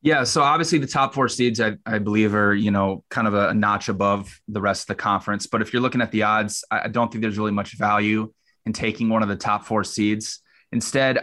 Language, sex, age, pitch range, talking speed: English, male, 20-39, 105-125 Hz, 245 wpm